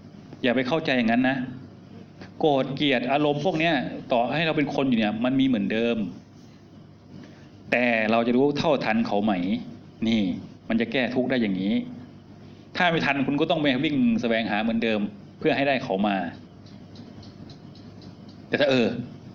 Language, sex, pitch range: Thai, male, 110-135 Hz